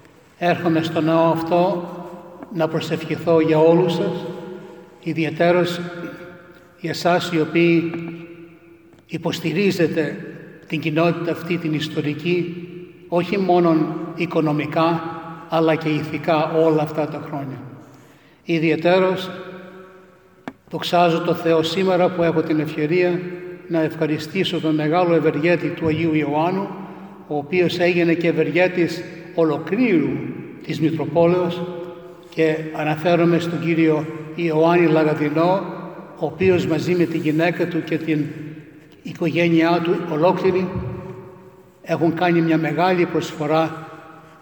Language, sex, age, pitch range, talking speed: English, male, 60-79, 160-175 Hz, 105 wpm